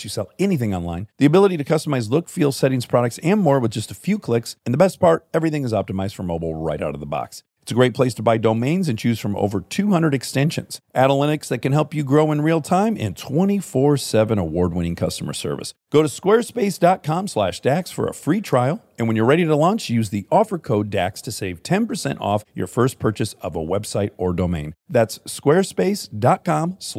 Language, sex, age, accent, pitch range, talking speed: English, male, 50-69, American, 105-155 Hz, 215 wpm